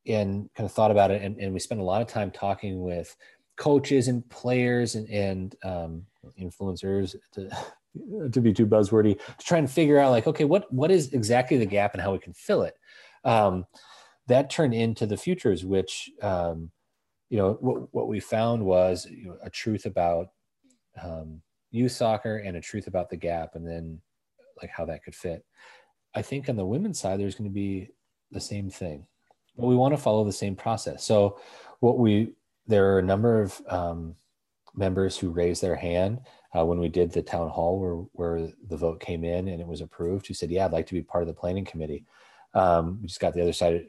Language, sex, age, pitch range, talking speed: English, male, 30-49, 85-115 Hz, 210 wpm